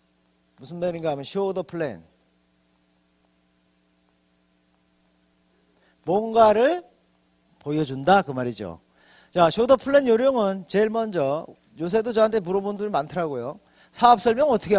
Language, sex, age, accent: Korean, male, 40-59, native